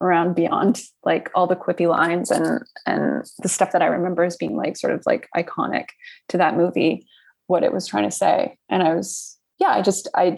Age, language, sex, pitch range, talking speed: 20-39, English, female, 175-195 Hz, 215 wpm